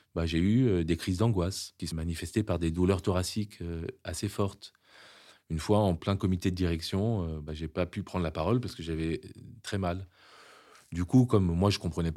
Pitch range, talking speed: 80-95 Hz, 205 wpm